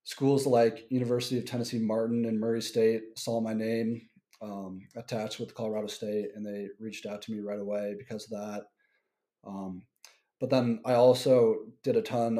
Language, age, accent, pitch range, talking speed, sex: English, 30-49, American, 105-120 Hz, 175 wpm, male